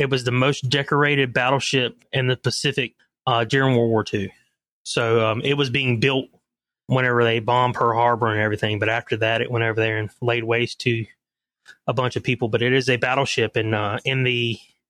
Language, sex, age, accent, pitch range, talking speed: English, male, 20-39, American, 120-140 Hz, 200 wpm